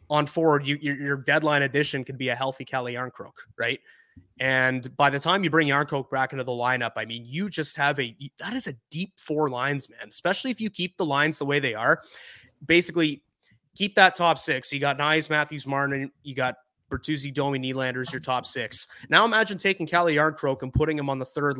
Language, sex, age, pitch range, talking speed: English, male, 20-39, 130-150 Hz, 210 wpm